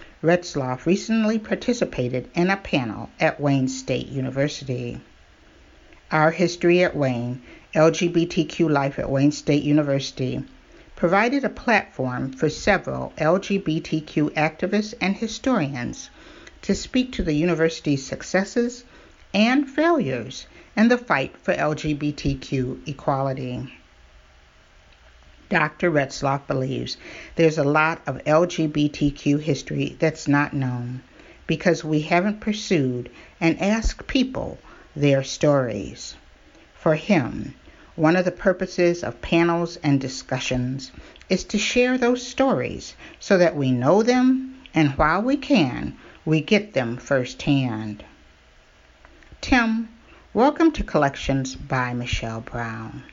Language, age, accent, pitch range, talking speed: English, 50-69, American, 130-190 Hz, 110 wpm